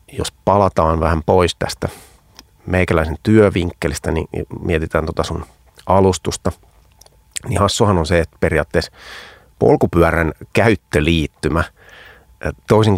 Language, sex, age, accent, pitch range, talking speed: Finnish, male, 30-49, native, 80-100 Hz, 95 wpm